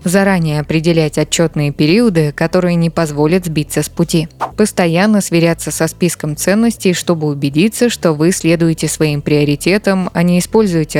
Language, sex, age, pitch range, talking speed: Russian, female, 20-39, 155-200 Hz, 135 wpm